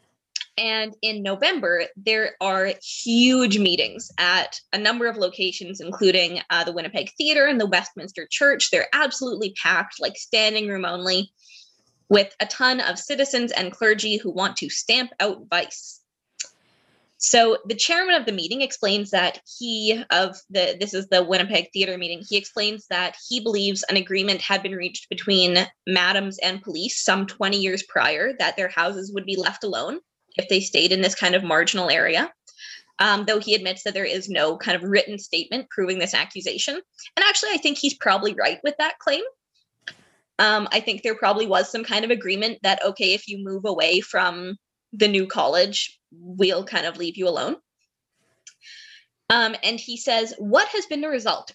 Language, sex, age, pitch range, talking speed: English, female, 20-39, 185-235 Hz, 175 wpm